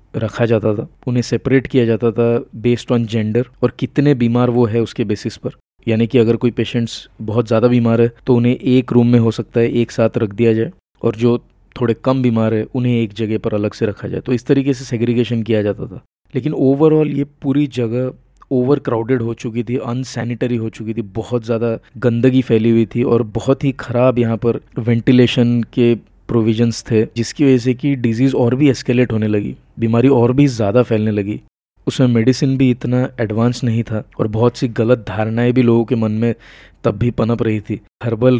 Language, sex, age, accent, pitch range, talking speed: Hindi, male, 20-39, native, 115-130 Hz, 205 wpm